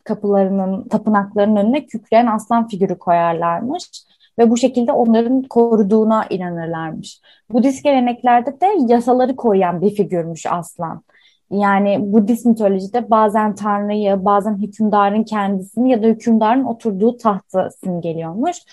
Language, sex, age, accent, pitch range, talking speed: Turkish, female, 20-39, native, 195-245 Hz, 110 wpm